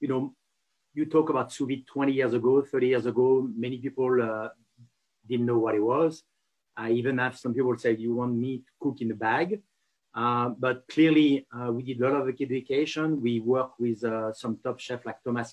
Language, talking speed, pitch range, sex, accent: English, 210 wpm, 120-140 Hz, male, French